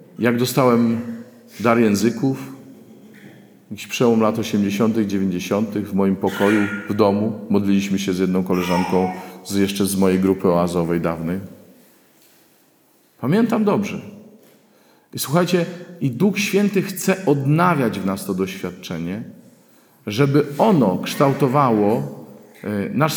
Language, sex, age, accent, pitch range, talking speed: Polish, male, 40-59, native, 105-155 Hz, 110 wpm